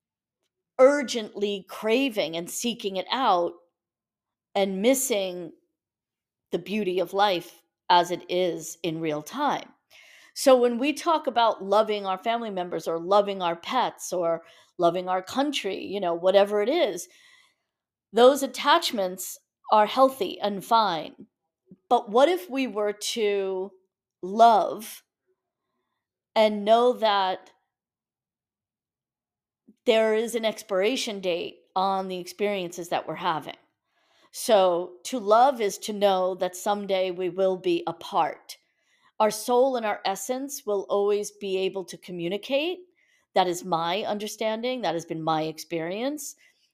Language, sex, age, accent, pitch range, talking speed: English, female, 40-59, American, 185-245 Hz, 125 wpm